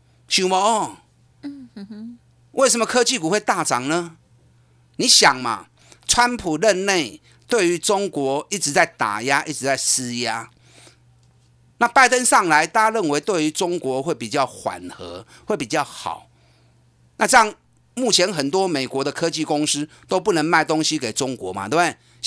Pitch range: 120-185 Hz